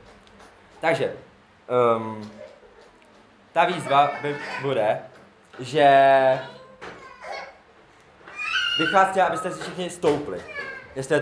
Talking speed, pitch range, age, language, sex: 75 wpm, 130-175 Hz, 20-39, Czech, male